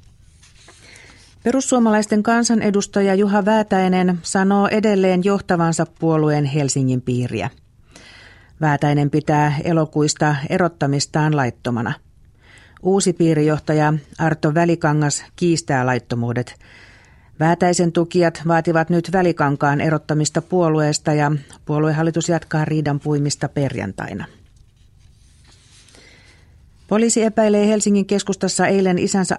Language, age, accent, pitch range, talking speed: Finnish, 40-59, native, 130-175 Hz, 80 wpm